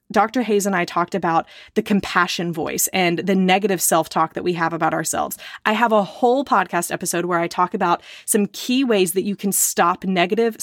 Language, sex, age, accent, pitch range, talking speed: English, female, 20-39, American, 175-225 Hz, 205 wpm